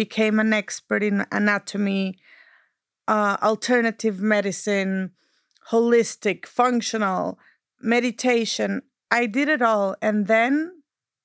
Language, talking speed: English, 90 wpm